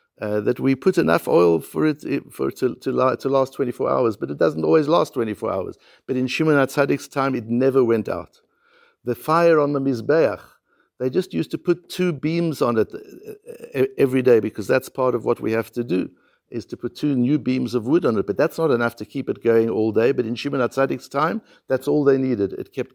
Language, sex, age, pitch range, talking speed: English, male, 60-79, 130-195 Hz, 230 wpm